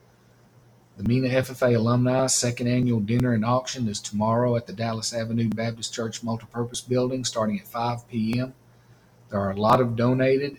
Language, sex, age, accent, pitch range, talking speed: English, male, 40-59, American, 115-125 Hz, 165 wpm